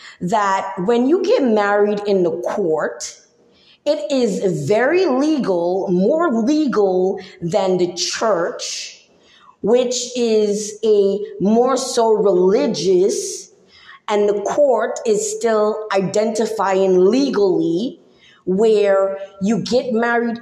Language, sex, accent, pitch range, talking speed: English, female, American, 195-245 Hz, 100 wpm